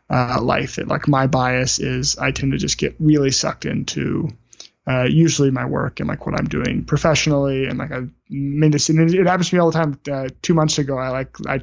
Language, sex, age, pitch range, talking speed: English, male, 20-39, 135-150 Hz, 220 wpm